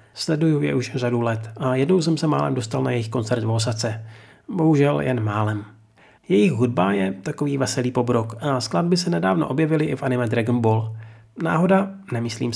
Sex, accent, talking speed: male, native, 175 wpm